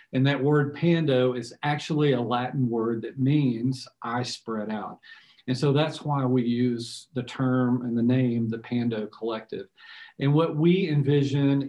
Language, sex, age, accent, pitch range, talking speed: English, male, 40-59, American, 125-140 Hz, 165 wpm